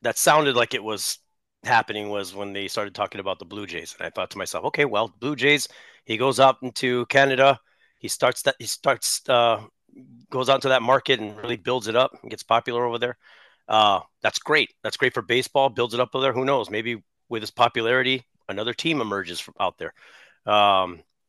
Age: 30-49